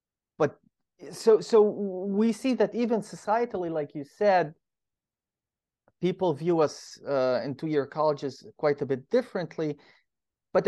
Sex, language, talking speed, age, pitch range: male, English, 125 wpm, 30-49, 145-185 Hz